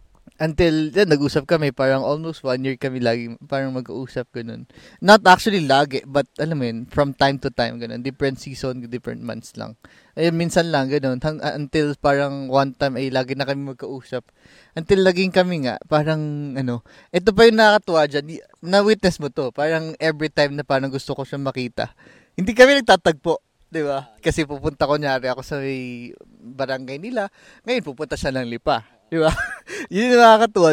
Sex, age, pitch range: male, 20-39, 130-160 Hz